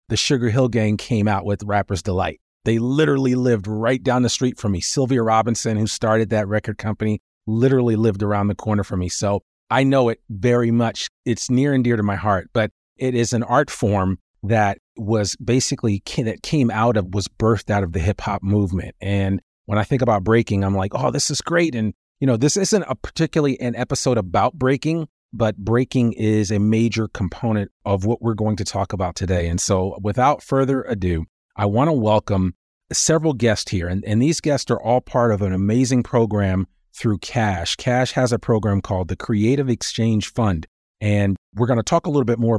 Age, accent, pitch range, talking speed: 40-59, American, 100-125 Hz, 205 wpm